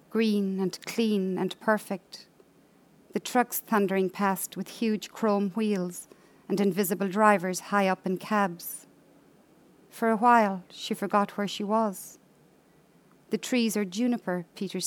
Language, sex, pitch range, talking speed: English, female, 185-215 Hz, 135 wpm